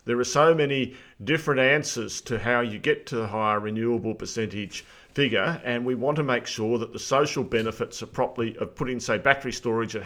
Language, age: English, 40-59